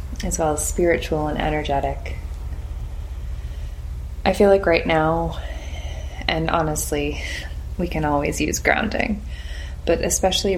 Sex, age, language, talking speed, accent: female, 20-39, English, 115 wpm, American